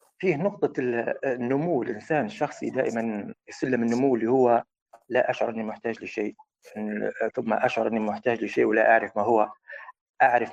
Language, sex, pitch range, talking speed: Arabic, male, 115-175 Hz, 140 wpm